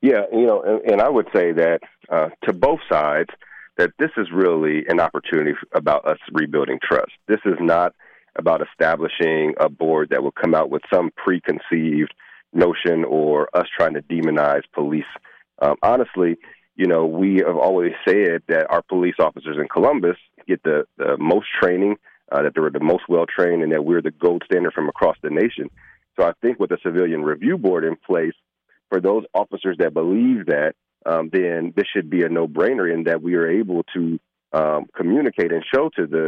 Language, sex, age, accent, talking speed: English, male, 40-59, American, 195 wpm